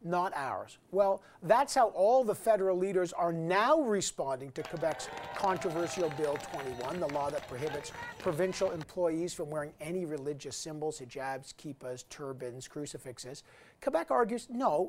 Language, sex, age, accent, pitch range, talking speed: English, male, 50-69, American, 155-205 Hz, 140 wpm